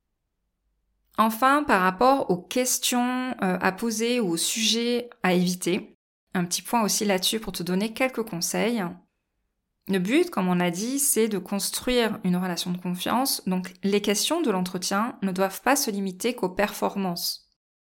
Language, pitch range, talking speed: French, 185-230 Hz, 160 wpm